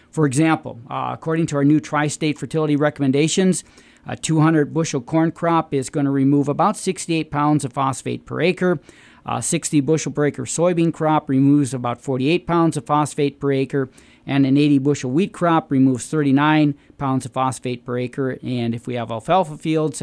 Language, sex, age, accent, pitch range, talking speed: English, male, 40-59, American, 130-155 Hz, 170 wpm